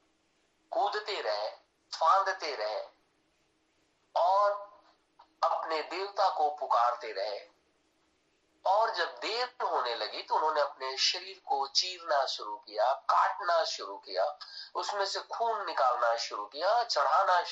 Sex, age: male, 50-69